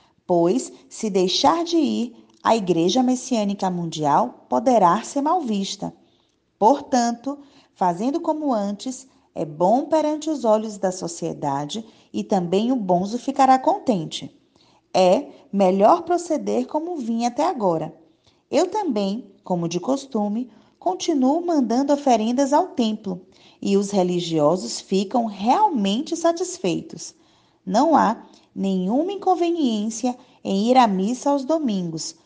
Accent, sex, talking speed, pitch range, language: Brazilian, female, 115 wpm, 185-280 Hz, Portuguese